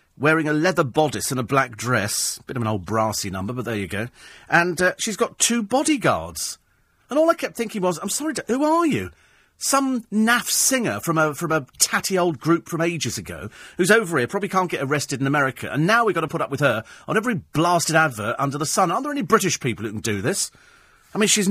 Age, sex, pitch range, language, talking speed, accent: 40-59, male, 125-195 Hz, English, 240 wpm, British